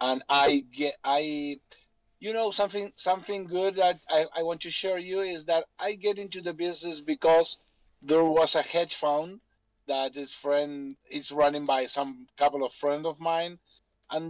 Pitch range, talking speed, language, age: 135-165 Hz, 175 wpm, English, 50-69